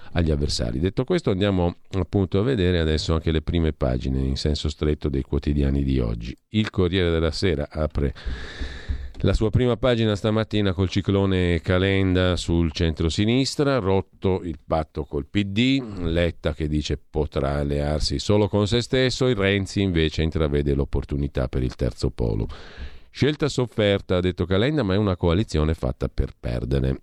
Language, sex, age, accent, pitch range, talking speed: Italian, male, 50-69, native, 75-100 Hz, 155 wpm